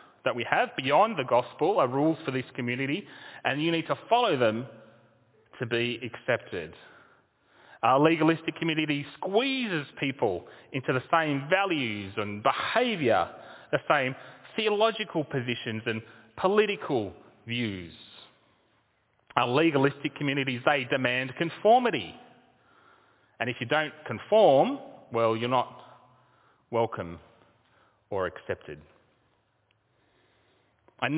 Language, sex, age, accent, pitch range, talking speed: English, male, 30-49, Australian, 105-140 Hz, 110 wpm